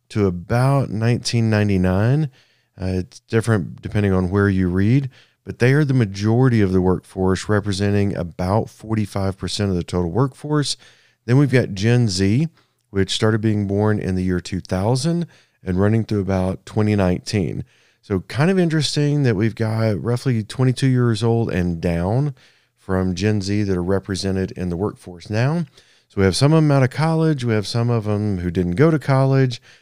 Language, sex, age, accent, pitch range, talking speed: English, male, 40-59, American, 100-130 Hz, 175 wpm